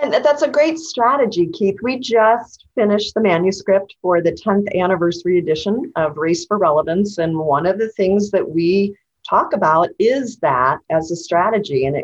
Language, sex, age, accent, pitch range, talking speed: English, female, 40-59, American, 165-205 Hz, 170 wpm